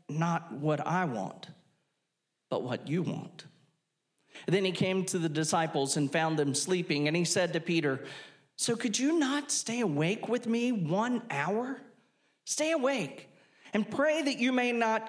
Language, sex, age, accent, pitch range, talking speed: English, male, 40-59, American, 135-185 Hz, 165 wpm